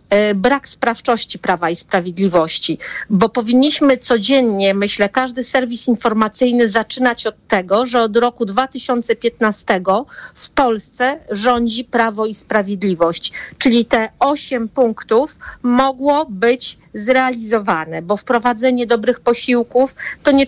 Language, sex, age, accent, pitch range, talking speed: Polish, female, 50-69, native, 210-250 Hz, 110 wpm